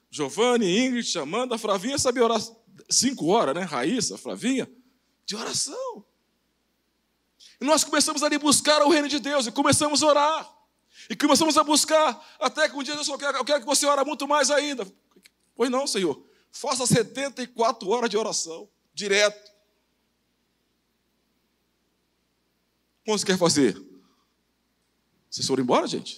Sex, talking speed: male, 140 wpm